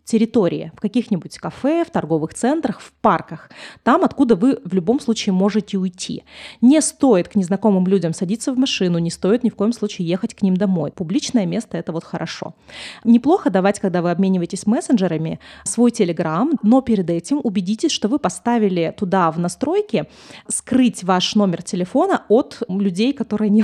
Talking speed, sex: 170 wpm, female